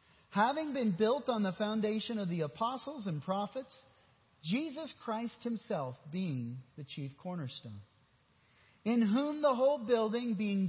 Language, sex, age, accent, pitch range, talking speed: English, male, 40-59, American, 170-230 Hz, 135 wpm